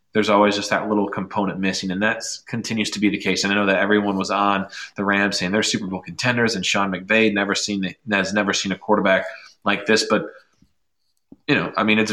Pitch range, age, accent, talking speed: 95-110 Hz, 20-39, American, 230 wpm